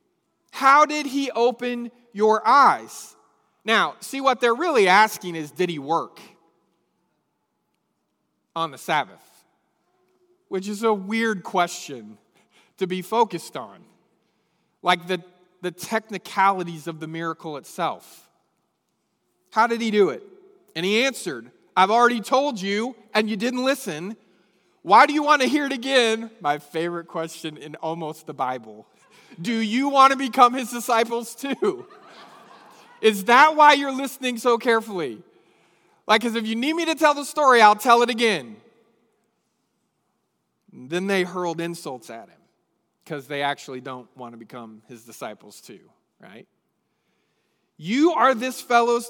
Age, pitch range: 40-59, 170-255 Hz